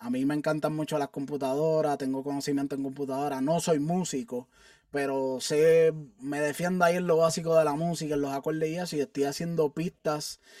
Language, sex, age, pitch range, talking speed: English, male, 20-39, 140-180 Hz, 190 wpm